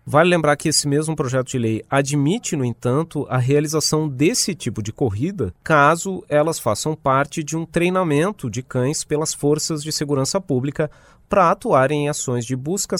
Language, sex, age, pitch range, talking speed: Portuguese, male, 30-49, 120-150 Hz, 170 wpm